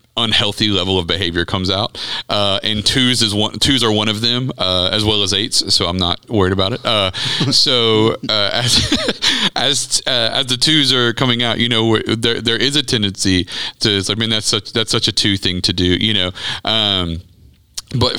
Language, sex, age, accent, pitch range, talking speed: English, male, 40-59, American, 90-110 Hz, 205 wpm